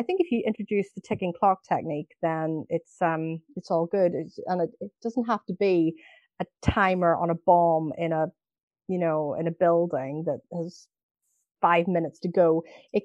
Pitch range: 170-210 Hz